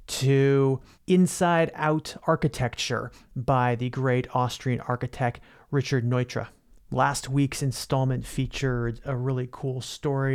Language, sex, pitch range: English, male, 125-150 Hz